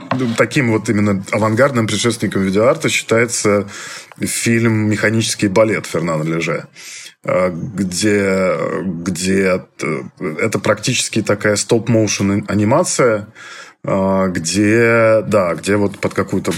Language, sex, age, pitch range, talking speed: Russian, male, 20-39, 95-115 Hz, 90 wpm